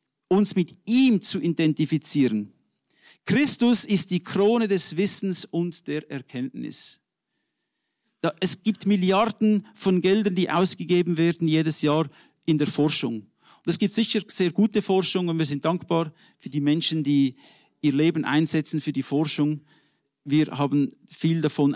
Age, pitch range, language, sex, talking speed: 50-69, 155-205 Hz, English, male, 145 wpm